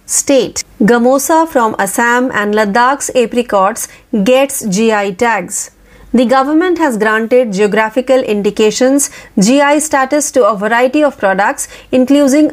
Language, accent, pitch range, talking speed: Marathi, native, 220-275 Hz, 115 wpm